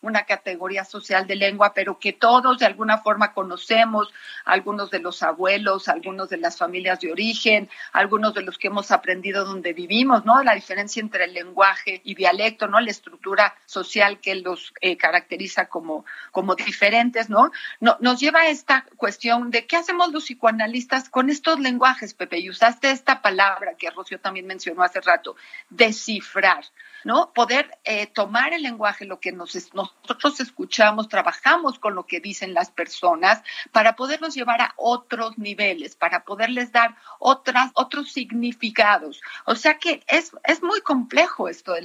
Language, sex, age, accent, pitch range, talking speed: Spanish, female, 40-59, Mexican, 195-255 Hz, 160 wpm